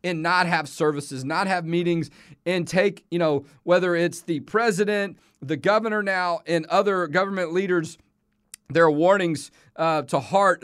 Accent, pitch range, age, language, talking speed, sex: American, 165-210 Hz, 40-59, English, 150 wpm, male